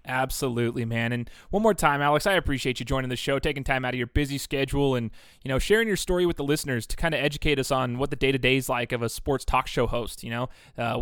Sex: male